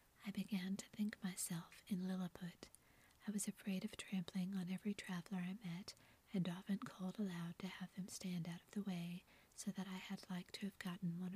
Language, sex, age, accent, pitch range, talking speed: English, female, 40-59, American, 185-200 Hz, 200 wpm